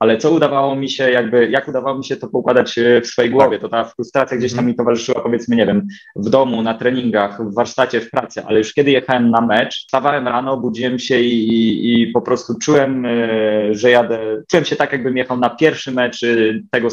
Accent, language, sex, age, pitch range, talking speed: native, Polish, male, 20-39, 110-130 Hz, 215 wpm